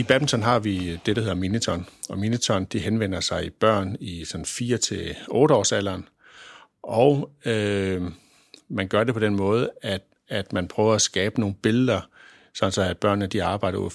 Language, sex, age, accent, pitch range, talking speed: Danish, male, 60-79, native, 95-115 Hz, 180 wpm